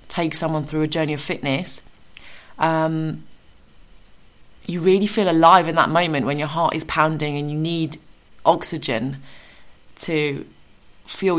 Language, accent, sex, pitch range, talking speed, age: English, British, female, 145-170 Hz, 135 wpm, 20-39